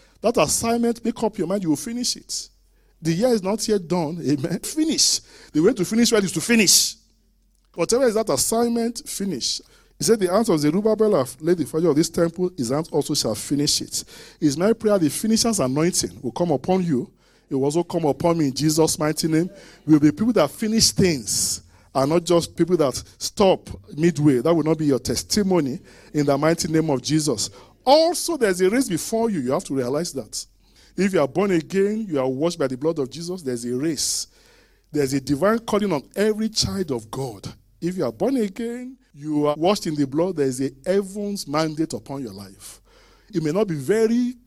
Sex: male